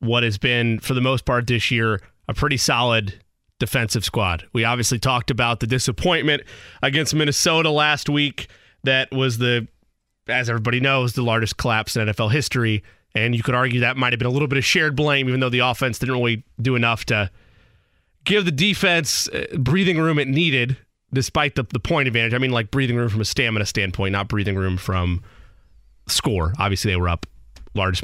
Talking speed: 195 wpm